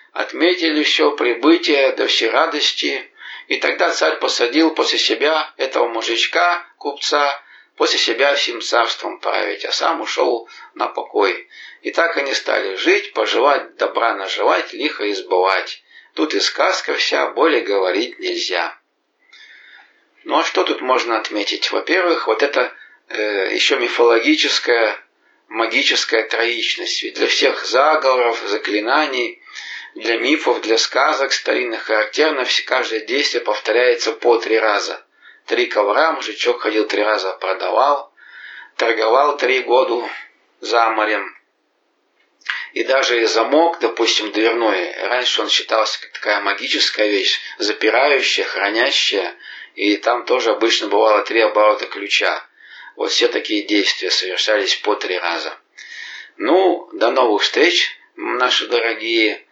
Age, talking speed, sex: 50-69, 120 wpm, male